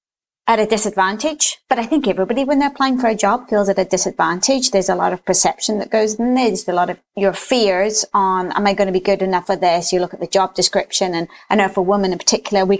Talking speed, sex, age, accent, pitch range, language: 265 wpm, female, 30-49, British, 190-220 Hz, English